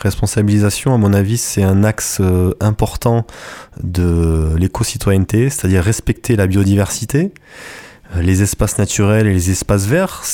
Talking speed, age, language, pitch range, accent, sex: 135 wpm, 20-39, French, 90-110 Hz, French, male